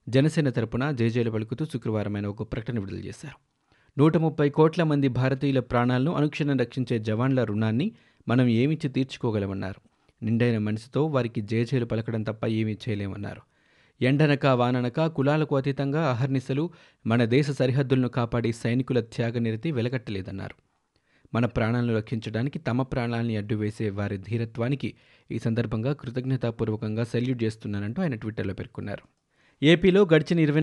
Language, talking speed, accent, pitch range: Telugu, 125 wpm, native, 110-140 Hz